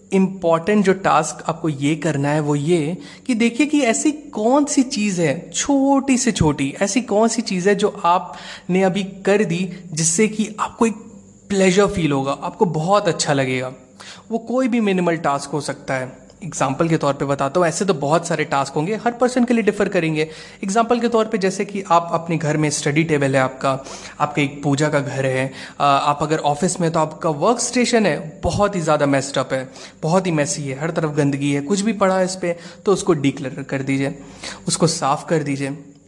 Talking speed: 205 wpm